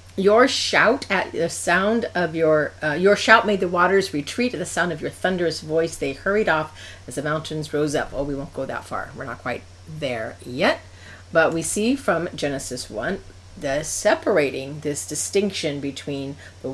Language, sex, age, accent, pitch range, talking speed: English, female, 40-59, American, 130-175 Hz, 185 wpm